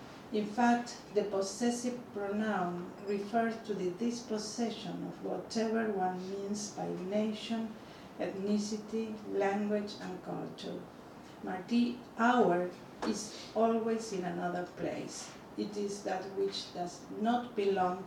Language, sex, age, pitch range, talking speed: English, female, 40-59, 185-220 Hz, 110 wpm